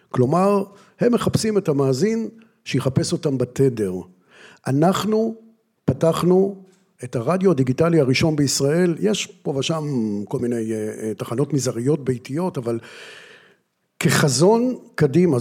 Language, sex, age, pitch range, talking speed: Hebrew, male, 50-69, 130-180 Hz, 100 wpm